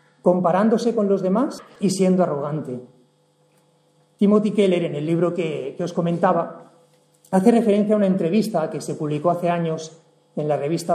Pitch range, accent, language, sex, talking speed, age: 165-205 Hz, Spanish, English, male, 160 wpm, 40-59